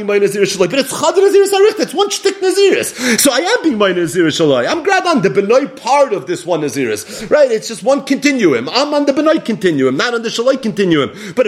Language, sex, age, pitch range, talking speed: English, male, 30-49, 195-285 Hz, 220 wpm